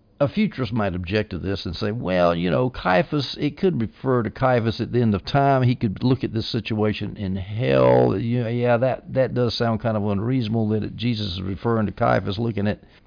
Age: 60-79